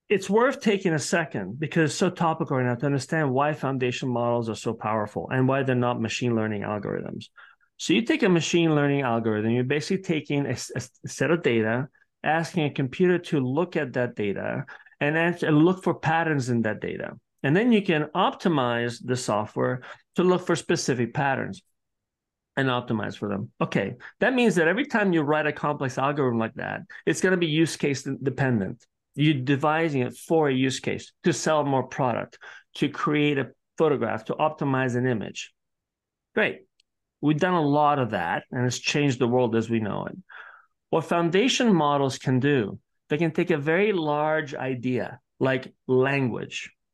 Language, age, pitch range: English, 40-59, 125-170 Hz